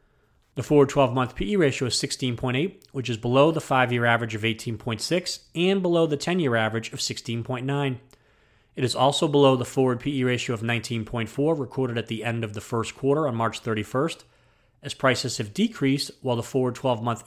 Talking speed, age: 175 wpm, 30-49